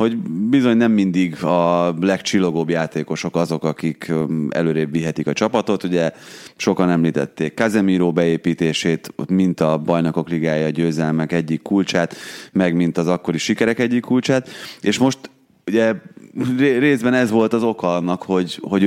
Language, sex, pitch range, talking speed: Hungarian, male, 85-105 Hz, 145 wpm